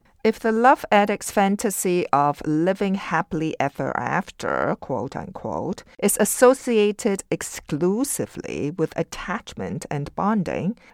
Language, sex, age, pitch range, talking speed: English, female, 50-69, 155-210 Hz, 100 wpm